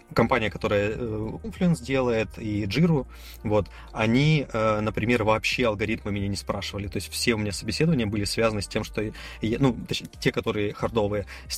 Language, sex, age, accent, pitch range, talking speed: Russian, male, 20-39, native, 100-125 Hz, 160 wpm